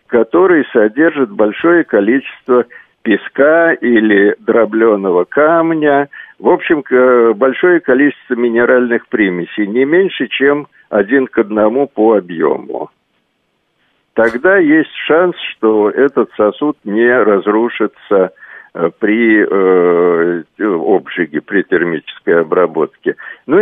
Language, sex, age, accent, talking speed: Russian, male, 60-79, native, 90 wpm